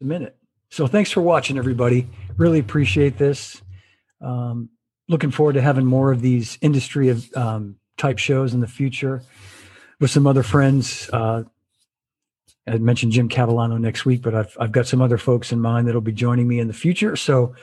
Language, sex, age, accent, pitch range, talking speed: English, male, 50-69, American, 110-135 Hz, 185 wpm